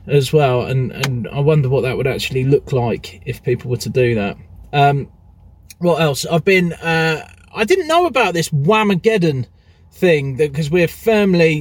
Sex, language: male, English